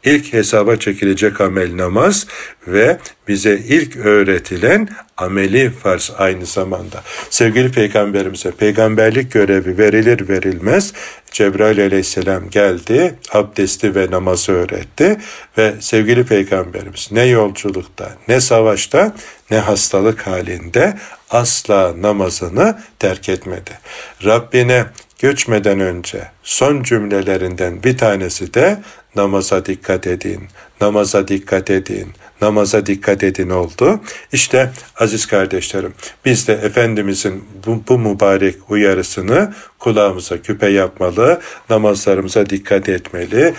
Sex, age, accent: male, 60-79, native